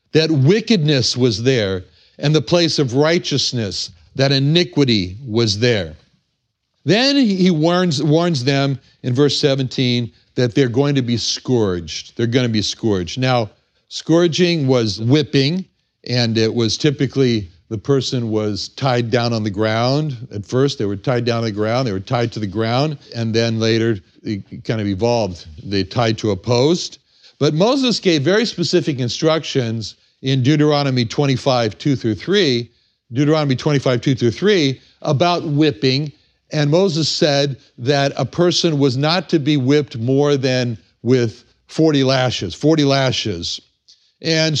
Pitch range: 115-150 Hz